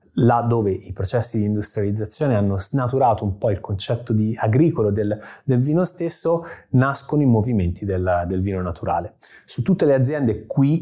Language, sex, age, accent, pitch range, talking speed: Italian, male, 20-39, native, 105-125 Hz, 165 wpm